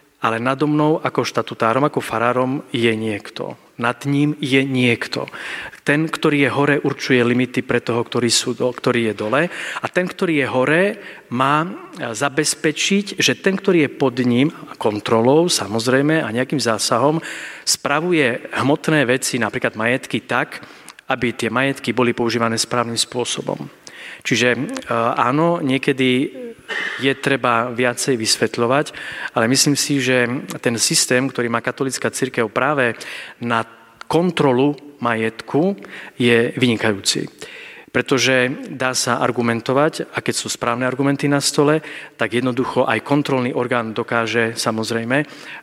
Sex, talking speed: male, 130 wpm